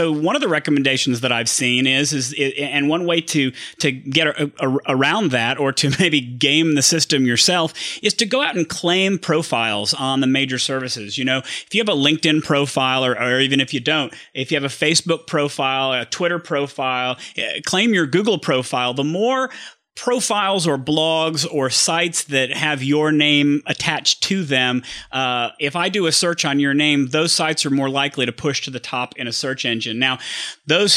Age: 30-49